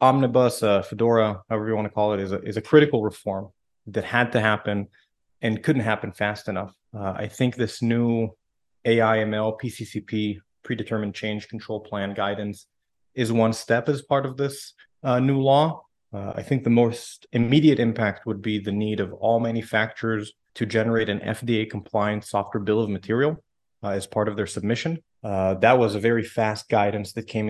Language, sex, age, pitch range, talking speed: English, male, 30-49, 105-115 Hz, 180 wpm